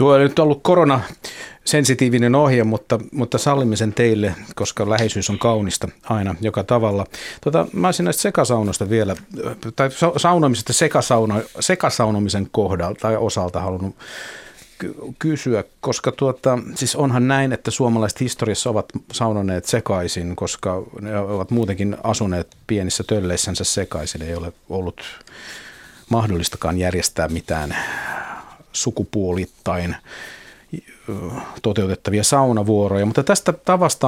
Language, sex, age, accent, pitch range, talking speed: Finnish, male, 50-69, native, 95-125 Hz, 115 wpm